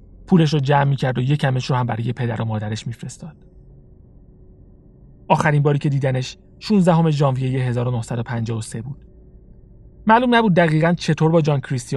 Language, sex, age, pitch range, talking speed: Persian, male, 30-49, 115-155 Hz, 150 wpm